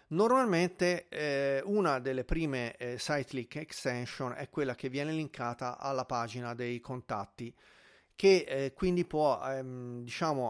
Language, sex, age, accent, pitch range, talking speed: Italian, male, 40-59, native, 120-160 Hz, 135 wpm